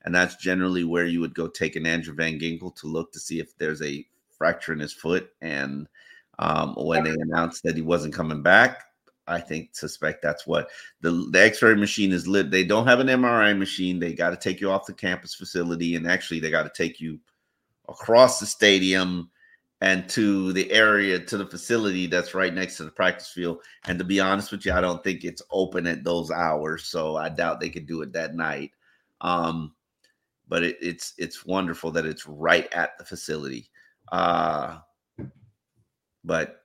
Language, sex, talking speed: English, male, 195 wpm